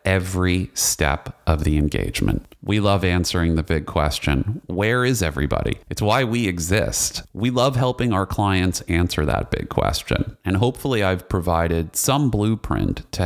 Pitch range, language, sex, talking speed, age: 80-110 Hz, English, male, 155 wpm, 30-49